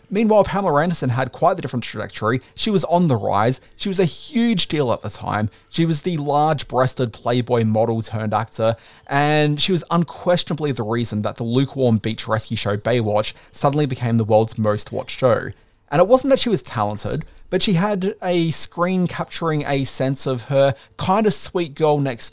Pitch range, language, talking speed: 110-170 Hz, English, 190 wpm